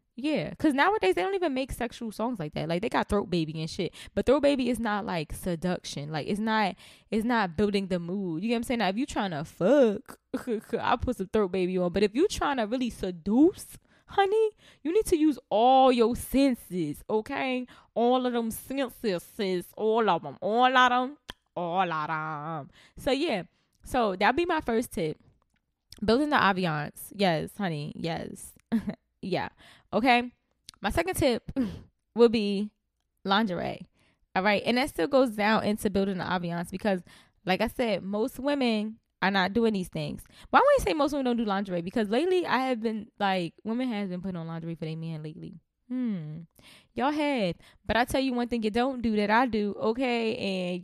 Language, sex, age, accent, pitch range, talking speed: English, female, 20-39, American, 185-255 Hz, 200 wpm